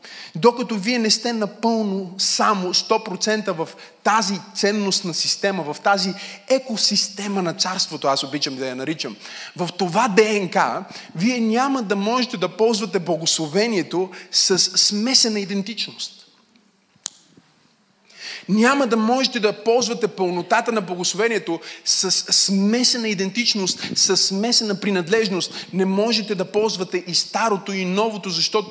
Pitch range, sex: 185-215 Hz, male